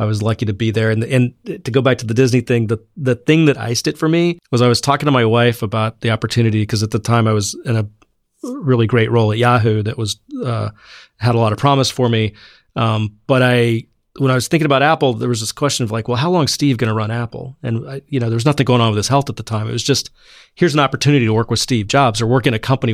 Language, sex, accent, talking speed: English, male, American, 290 wpm